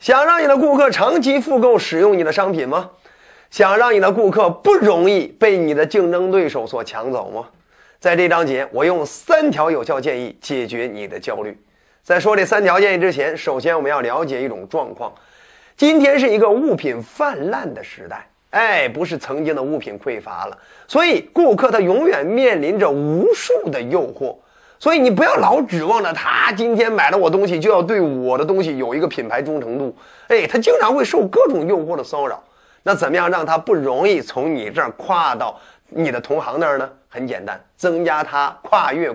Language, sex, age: Chinese, male, 30-49